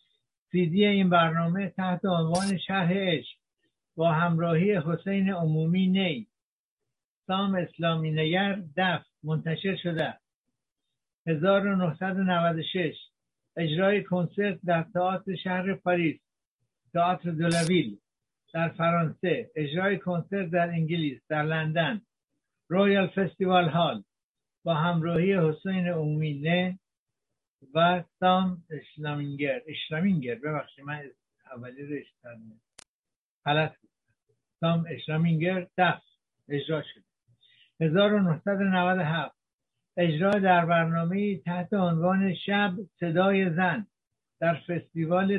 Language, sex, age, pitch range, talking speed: Persian, male, 60-79, 160-185 Hz, 85 wpm